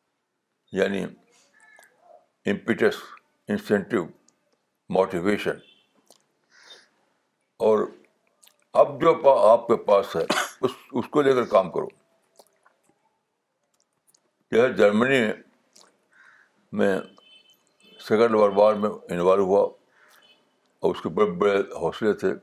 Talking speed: 90 wpm